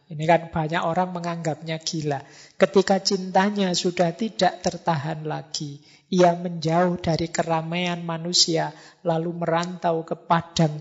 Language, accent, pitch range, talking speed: Indonesian, native, 155-185 Hz, 115 wpm